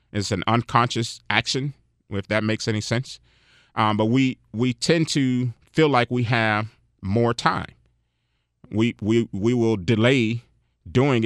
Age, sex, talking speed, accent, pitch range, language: 30-49, male, 145 wpm, American, 105-125 Hz, English